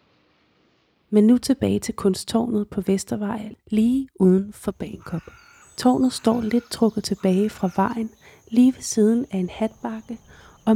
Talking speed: 140 wpm